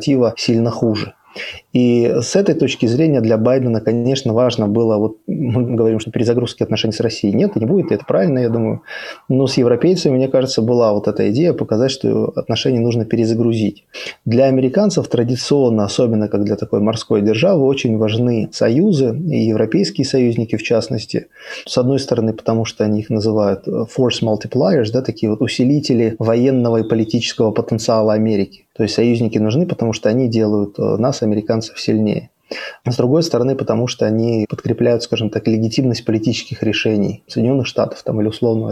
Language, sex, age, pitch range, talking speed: Russian, male, 20-39, 110-125 Hz, 165 wpm